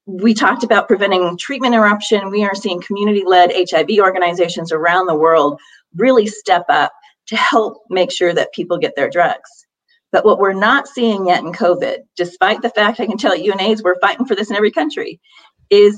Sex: female